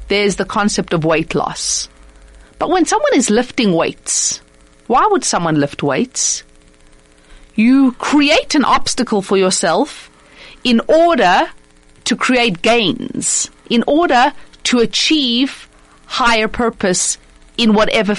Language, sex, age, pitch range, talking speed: English, female, 40-59, 205-295 Hz, 120 wpm